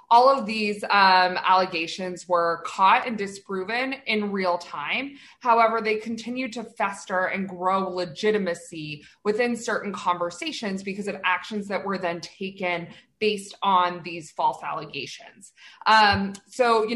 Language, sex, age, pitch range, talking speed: English, female, 20-39, 180-210 Hz, 135 wpm